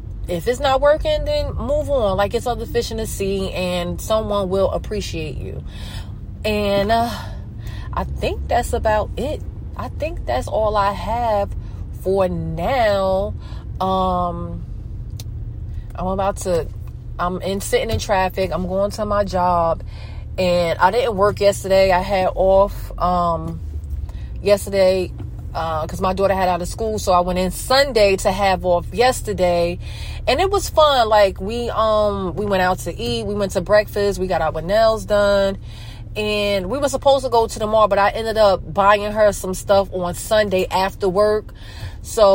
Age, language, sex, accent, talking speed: 30-49, English, female, American, 165 wpm